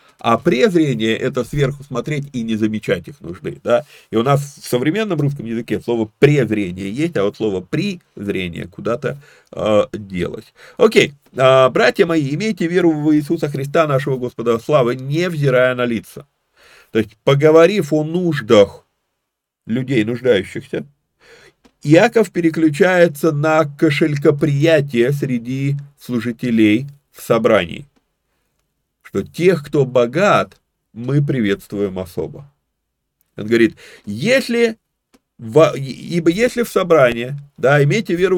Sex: male